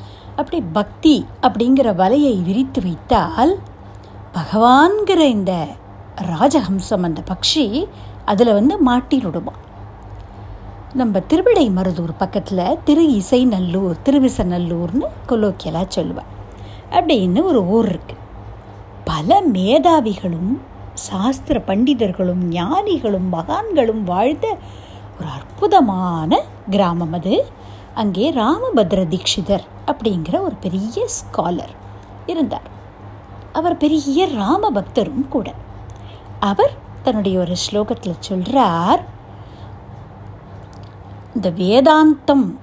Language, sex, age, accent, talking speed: Tamil, female, 50-69, native, 85 wpm